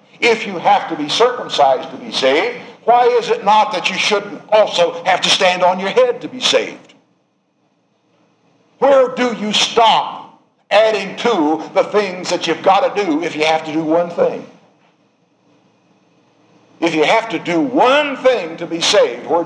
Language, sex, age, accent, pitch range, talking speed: English, male, 60-79, American, 160-220 Hz, 175 wpm